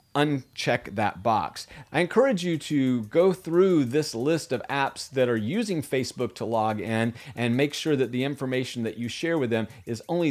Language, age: English, 40-59